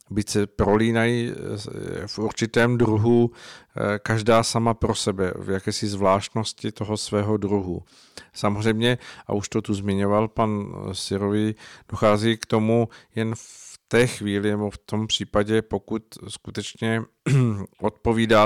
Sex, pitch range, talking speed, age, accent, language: male, 100-110 Hz, 125 wpm, 50-69, native, Czech